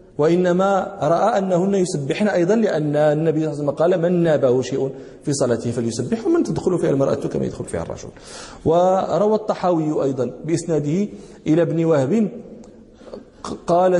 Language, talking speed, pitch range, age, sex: Danish, 145 wpm, 120-155 Hz, 40-59, male